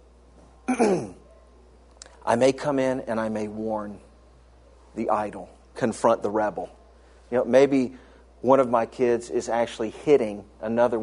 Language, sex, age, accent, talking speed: English, male, 40-59, American, 130 wpm